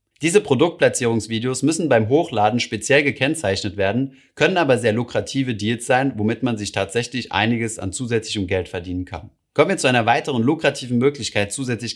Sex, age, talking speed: male, 30-49, 160 wpm